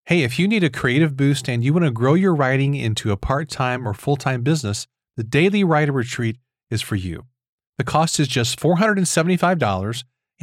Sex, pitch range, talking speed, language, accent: male, 115-155 Hz, 185 wpm, English, American